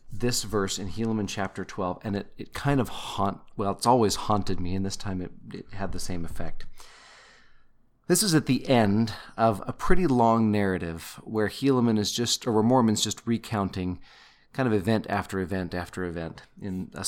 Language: English